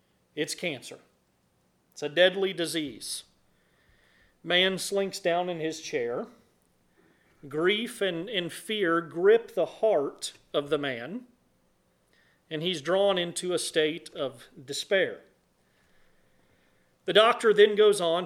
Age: 40-59